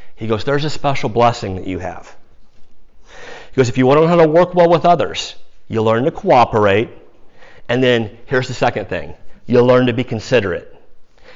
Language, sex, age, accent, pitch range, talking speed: English, male, 40-59, American, 115-155 Hz, 195 wpm